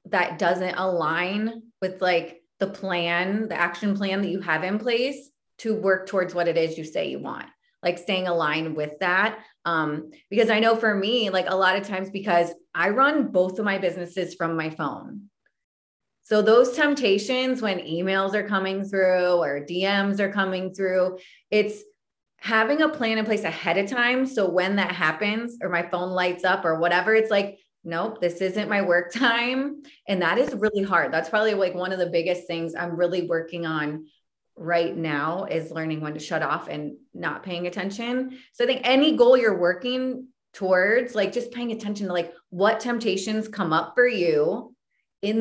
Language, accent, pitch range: English, American, 175-220 Hz